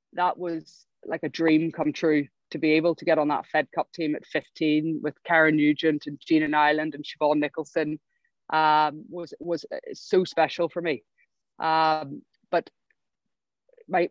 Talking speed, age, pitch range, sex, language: 160 wpm, 30-49, 150-165 Hz, female, English